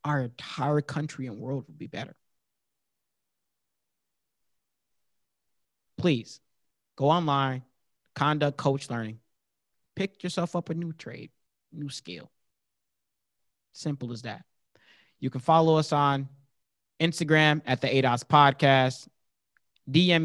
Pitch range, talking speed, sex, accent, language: 120-145 Hz, 105 wpm, male, American, English